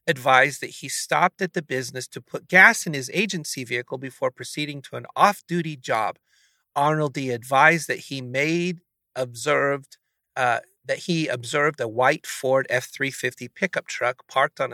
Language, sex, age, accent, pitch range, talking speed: English, male, 40-59, American, 130-170 Hz, 165 wpm